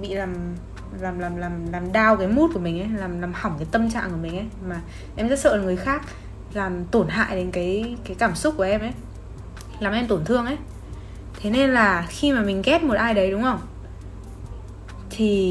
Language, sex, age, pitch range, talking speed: Vietnamese, female, 10-29, 170-240 Hz, 215 wpm